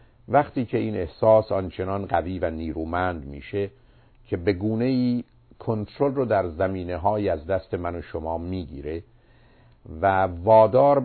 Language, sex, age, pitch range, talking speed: Persian, male, 50-69, 90-120 Hz, 135 wpm